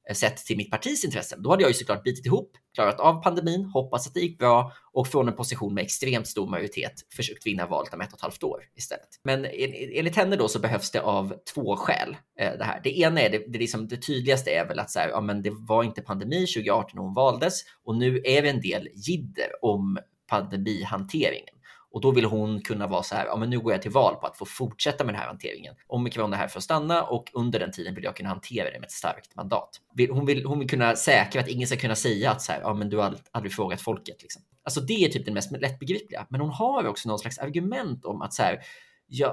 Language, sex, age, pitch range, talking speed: Swedish, male, 20-39, 110-145 Hz, 255 wpm